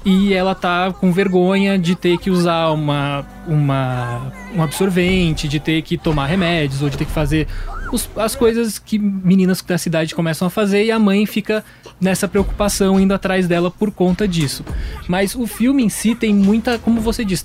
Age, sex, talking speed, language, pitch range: 20-39, male, 190 wpm, English, 165-205 Hz